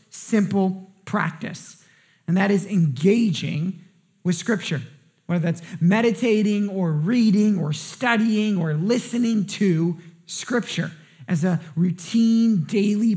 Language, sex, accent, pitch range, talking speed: English, male, American, 180-230 Hz, 105 wpm